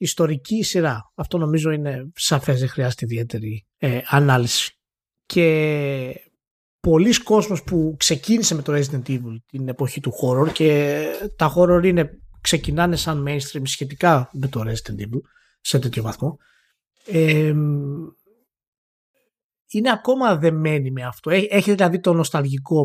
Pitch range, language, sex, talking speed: 140-200 Hz, Greek, male, 135 wpm